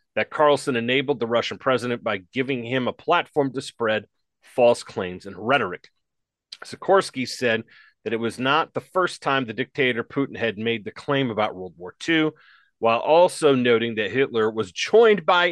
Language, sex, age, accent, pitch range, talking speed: English, male, 30-49, American, 115-145 Hz, 175 wpm